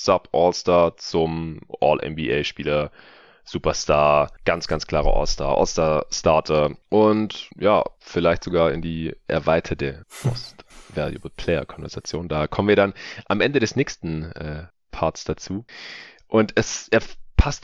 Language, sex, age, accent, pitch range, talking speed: German, male, 30-49, German, 75-90 Hz, 110 wpm